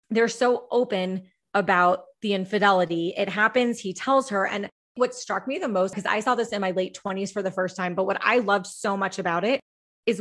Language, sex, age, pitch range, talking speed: English, female, 20-39, 185-220 Hz, 225 wpm